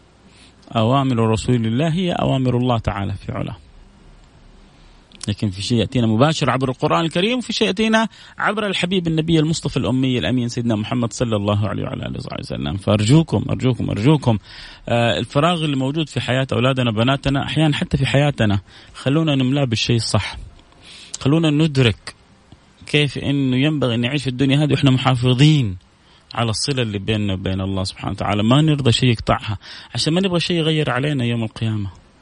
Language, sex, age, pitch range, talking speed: Arabic, male, 30-49, 110-140 Hz, 155 wpm